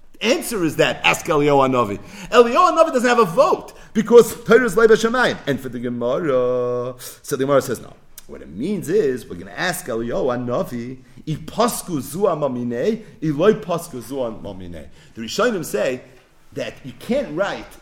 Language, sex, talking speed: English, male, 145 wpm